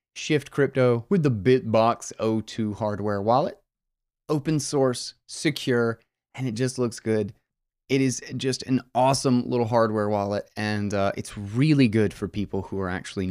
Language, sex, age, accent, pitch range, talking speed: English, male, 20-39, American, 100-130 Hz, 155 wpm